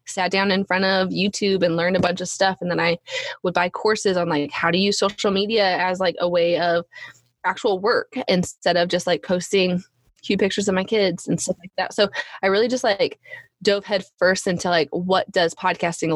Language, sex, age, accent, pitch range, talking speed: English, female, 20-39, American, 175-230 Hz, 220 wpm